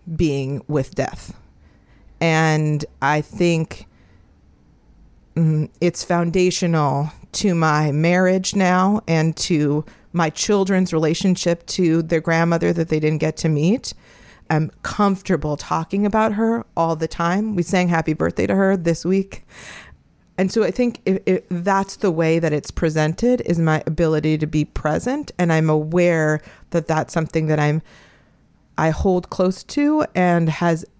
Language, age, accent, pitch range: English, 40-59, American, 155-185 Hz